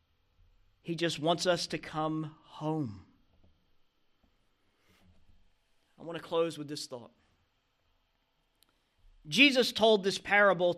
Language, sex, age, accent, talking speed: English, male, 40-59, American, 100 wpm